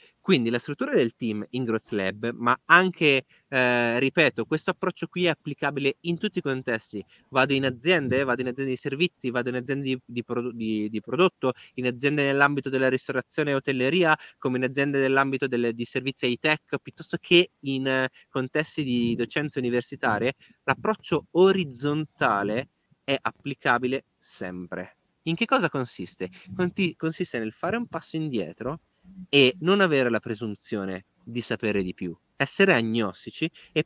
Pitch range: 115-150 Hz